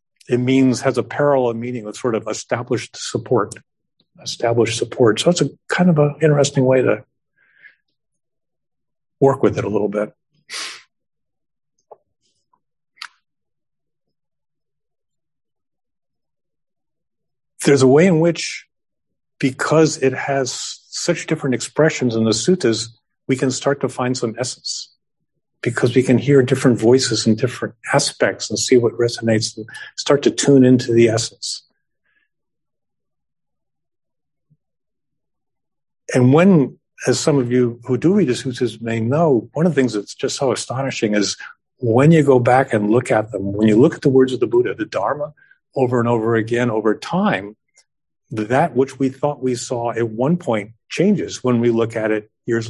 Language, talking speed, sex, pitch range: English, 150 wpm, male, 115-140 Hz